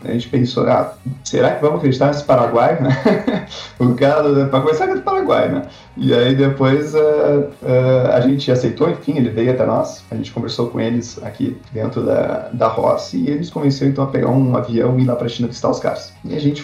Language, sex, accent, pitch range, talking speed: Portuguese, male, Brazilian, 120-140 Hz, 220 wpm